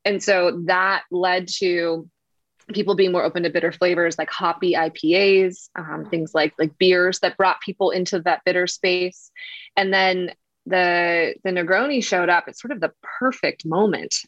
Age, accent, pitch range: 20-39, American, 170-210 Hz